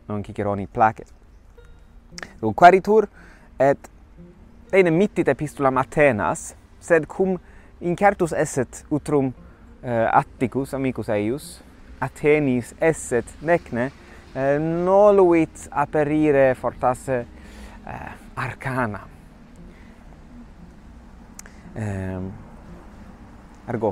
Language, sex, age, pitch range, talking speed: English, male, 30-49, 105-150 Hz, 65 wpm